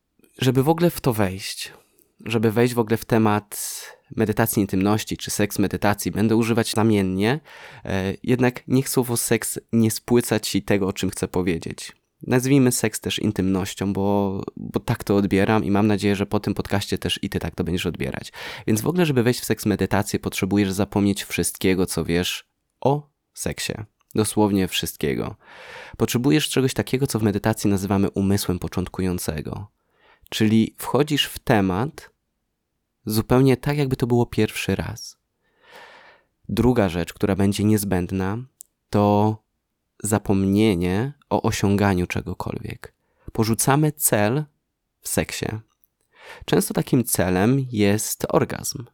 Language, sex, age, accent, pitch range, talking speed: Polish, male, 20-39, native, 100-115 Hz, 135 wpm